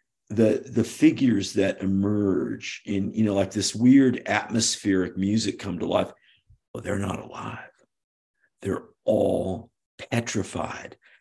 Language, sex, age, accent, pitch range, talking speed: English, male, 50-69, American, 105-125 Hz, 125 wpm